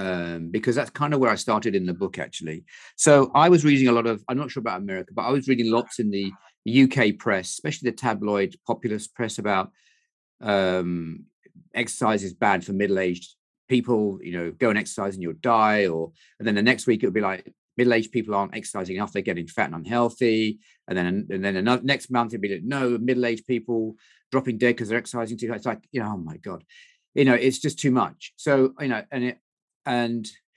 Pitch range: 100-130 Hz